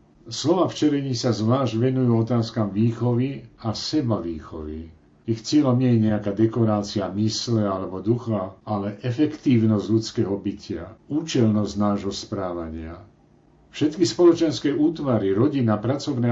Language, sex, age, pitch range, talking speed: Slovak, male, 60-79, 100-115 Hz, 110 wpm